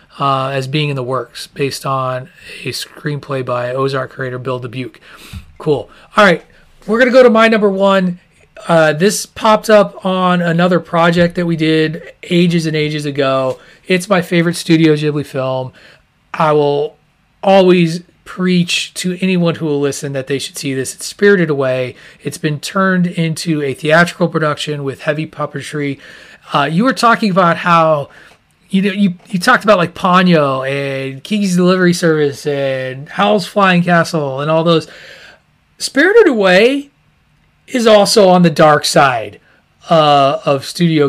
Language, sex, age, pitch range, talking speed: English, male, 30-49, 145-195 Hz, 160 wpm